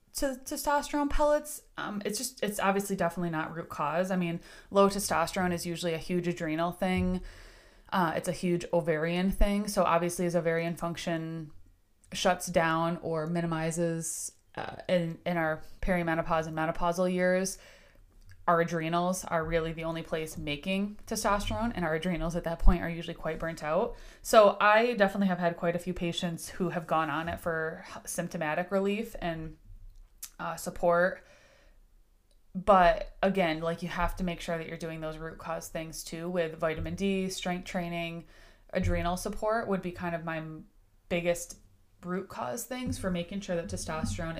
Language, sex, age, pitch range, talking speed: English, female, 20-39, 160-185 Hz, 165 wpm